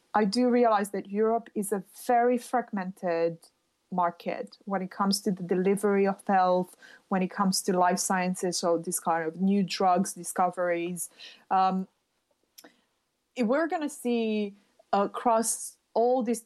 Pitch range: 185-230 Hz